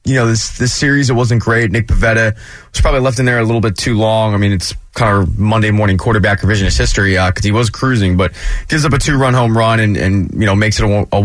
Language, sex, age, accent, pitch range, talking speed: English, male, 20-39, American, 100-130 Hz, 265 wpm